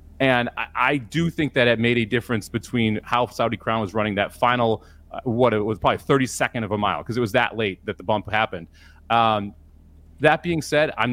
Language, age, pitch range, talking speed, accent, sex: English, 30-49, 100-130 Hz, 215 wpm, American, male